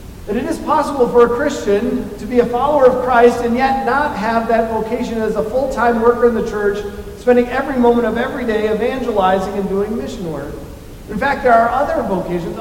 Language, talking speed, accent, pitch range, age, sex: English, 205 wpm, American, 180-230 Hz, 40-59, male